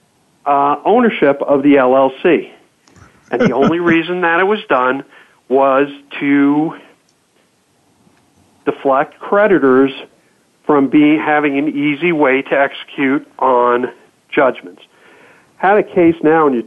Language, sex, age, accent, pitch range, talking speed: English, male, 50-69, American, 135-160 Hz, 120 wpm